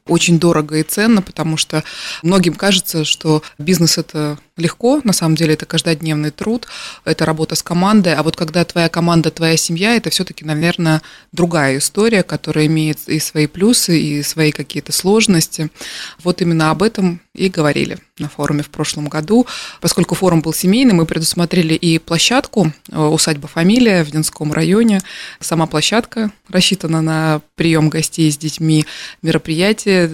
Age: 20-39